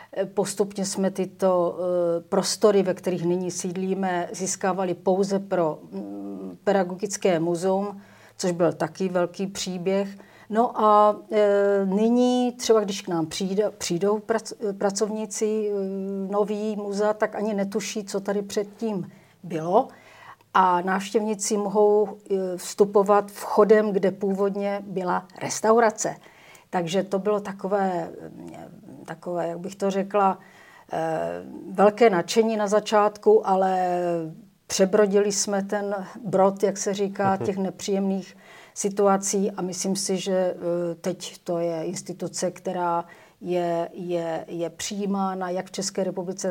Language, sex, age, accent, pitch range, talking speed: Czech, female, 40-59, native, 180-205 Hz, 110 wpm